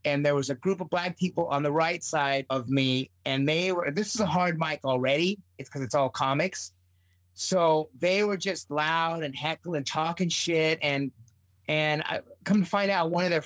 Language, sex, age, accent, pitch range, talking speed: English, male, 30-49, American, 145-195 Hz, 210 wpm